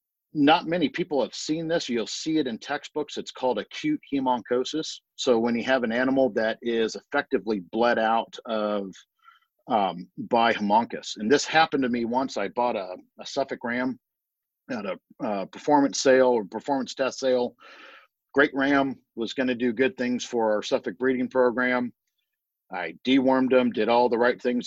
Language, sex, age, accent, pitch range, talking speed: English, male, 50-69, American, 115-130 Hz, 175 wpm